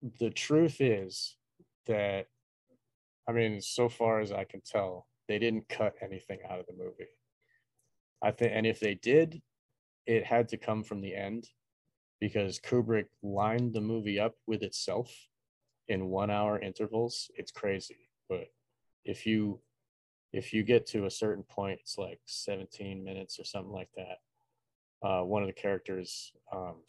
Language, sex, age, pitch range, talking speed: English, male, 30-49, 100-120 Hz, 155 wpm